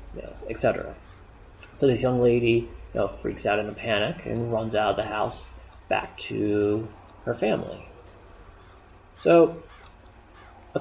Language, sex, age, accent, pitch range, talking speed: English, male, 30-49, American, 95-125 Hz, 135 wpm